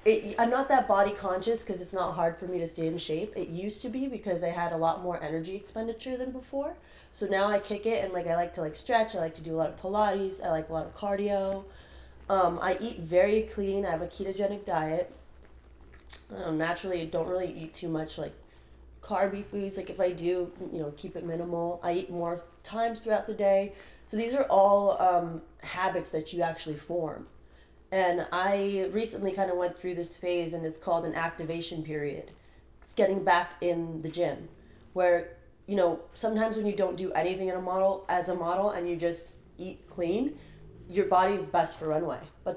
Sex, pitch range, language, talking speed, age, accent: female, 165-195 Hz, English, 205 wpm, 20-39, American